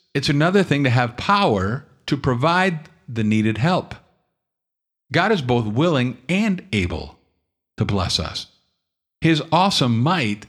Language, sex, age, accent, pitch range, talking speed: English, male, 50-69, American, 110-155 Hz, 130 wpm